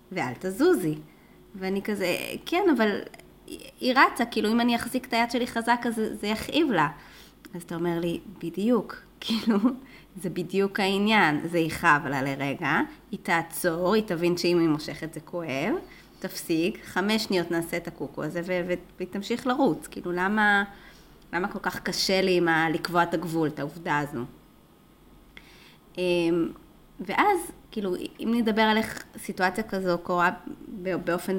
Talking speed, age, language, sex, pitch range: 145 wpm, 20-39, Hebrew, female, 170-220 Hz